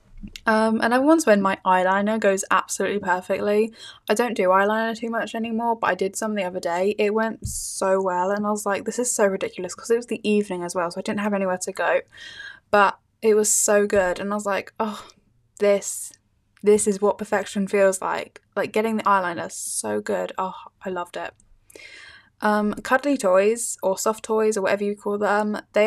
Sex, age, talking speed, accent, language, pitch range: female, 10-29, 205 wpm, British, English, 190-225 Hz